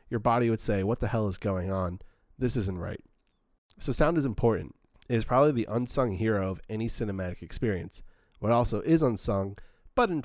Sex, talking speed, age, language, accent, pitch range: male, 195 wpm, 30-49, English, American, 95-120 Hz